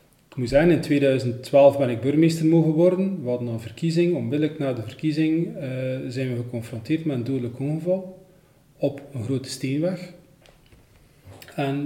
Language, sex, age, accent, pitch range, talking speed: Dutch, male, 40-59, Dutch, 125-155 Hz, 155 wpm